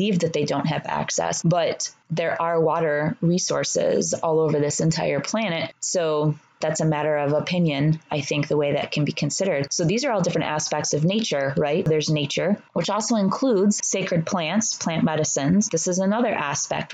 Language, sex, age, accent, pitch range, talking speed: English, female, 20-39, American, 155-185 Hz, 180 wpm